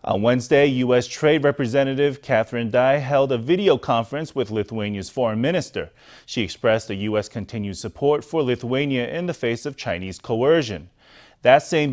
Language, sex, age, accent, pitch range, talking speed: English, male, 30-49, American, 115-150 Hz, 155 wpm